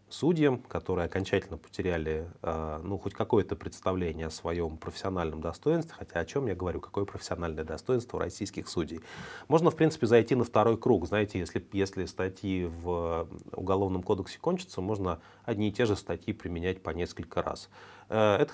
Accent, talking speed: native, 160 wpm